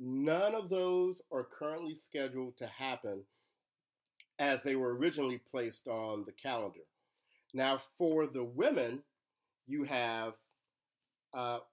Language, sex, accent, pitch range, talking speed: English, male, American, 125-160 Hz, 120 wpm